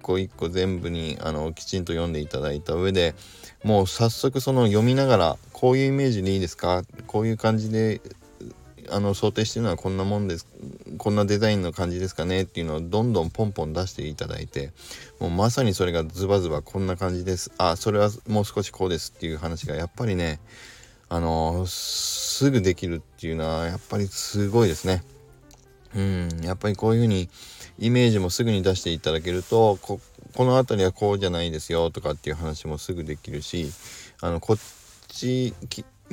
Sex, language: male, Japanese